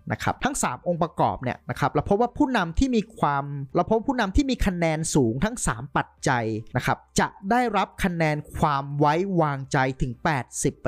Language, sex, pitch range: Thai, male, 140-185 Hz